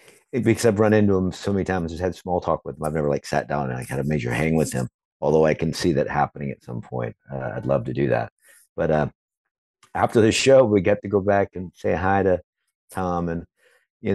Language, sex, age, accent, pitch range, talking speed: English, male, 50-69, American, 80-105 Hz, 250 wpm